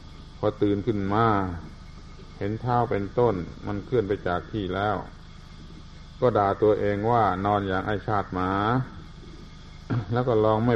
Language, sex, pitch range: Thai, male, 85-115 Hz